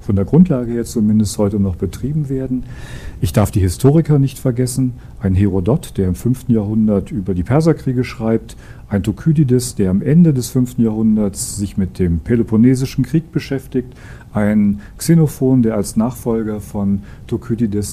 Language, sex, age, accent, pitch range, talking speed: German, male, 40-59, German, 100-120 Hz, 155 wpm